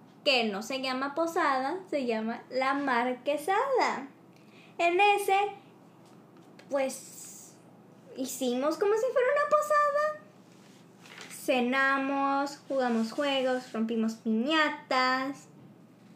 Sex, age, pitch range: male, 20-39, 230-300 Hz